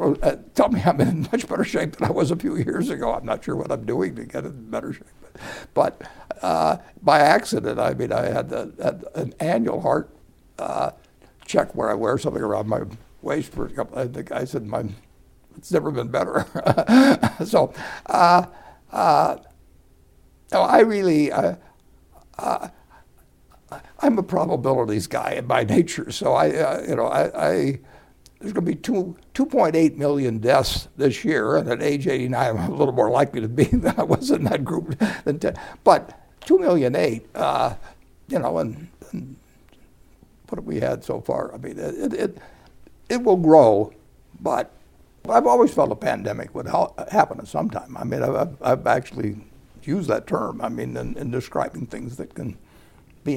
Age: 60-79